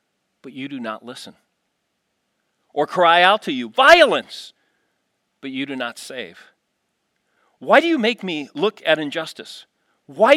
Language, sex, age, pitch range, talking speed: English, male, 40-59, 125-190 Hz, 145 wpm